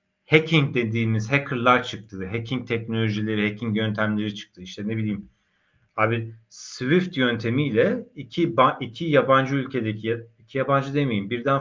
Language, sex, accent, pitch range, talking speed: Turkish, male, native, 110-150 Hz, 125 wpm